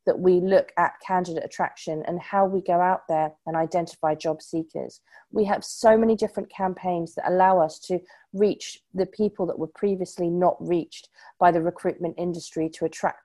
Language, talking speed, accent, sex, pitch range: English, 180 wpm, British, female, 175-210 Hz